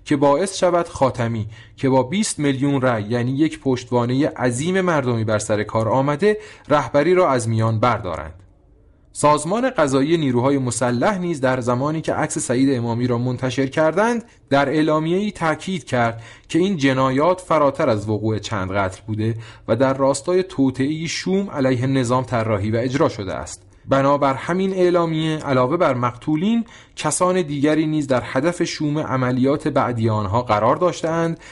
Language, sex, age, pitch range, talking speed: English, male, 30-49, 120-165 Hz, 150 wpm